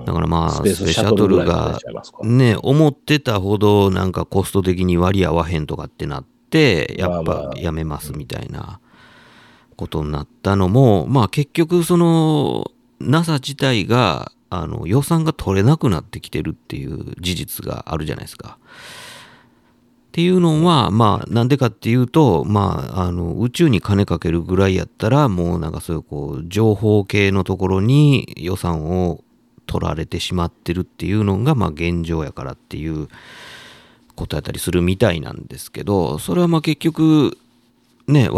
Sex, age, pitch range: male, 50-69, 85-130 Hz